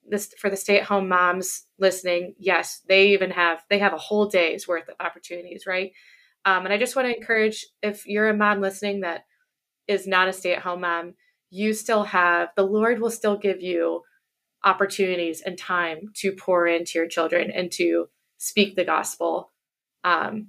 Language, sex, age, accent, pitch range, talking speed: English, female, 20-39, American, 175-205 Hz, 185 wpm